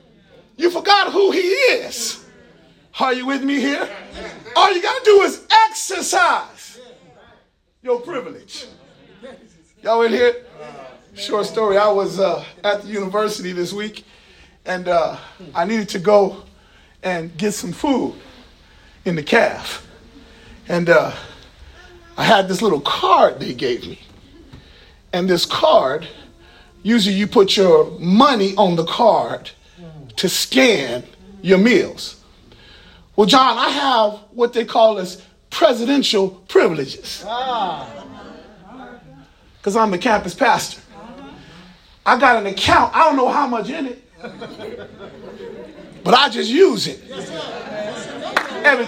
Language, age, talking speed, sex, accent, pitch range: English, 40-59, 125 wpm, male, American, 195-310 Hz